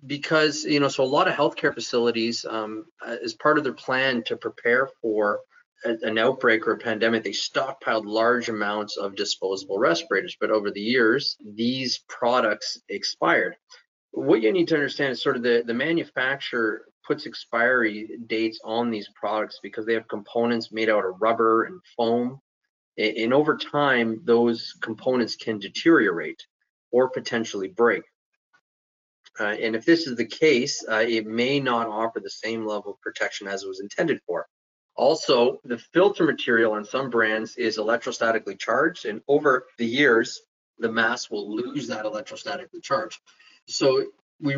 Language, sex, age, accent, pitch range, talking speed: English, male, 30-49, American, 110-135 Hz, 160 wpm